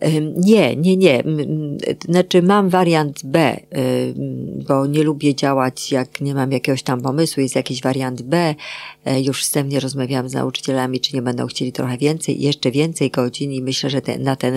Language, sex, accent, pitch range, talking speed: Polish, female, native, 125-145 Hz, 170 wpm